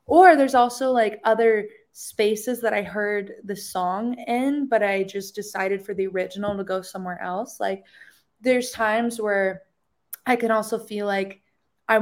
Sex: female